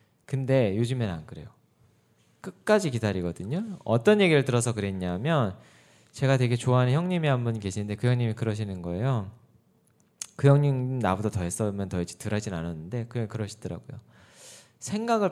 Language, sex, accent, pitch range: Korean, male, native, 110-155 Hz